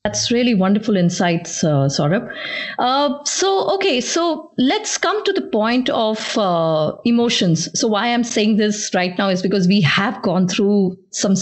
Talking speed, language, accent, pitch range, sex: 170 wpm, English, Indian, 195-245 Hz, female